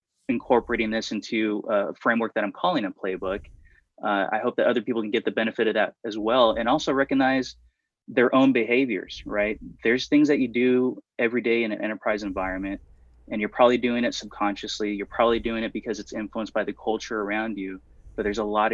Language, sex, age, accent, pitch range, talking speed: English, male, 20-39, American, 100-120 Hz, 205 wpm